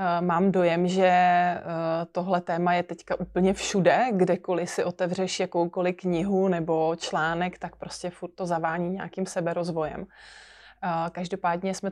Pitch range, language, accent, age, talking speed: 175-200 Hz, Czech, native, 20-39, 125 wpm